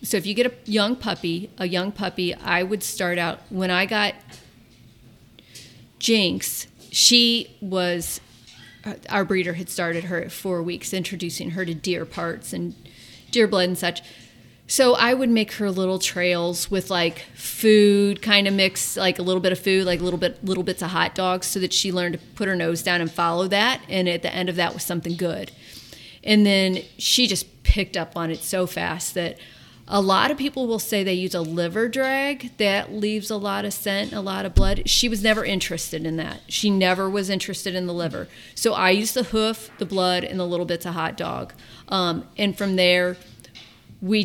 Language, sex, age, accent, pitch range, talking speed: English, female, 40-59, American, 170-205 Hz, 205 wpm